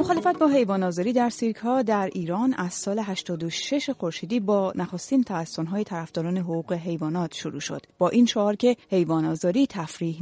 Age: 30-49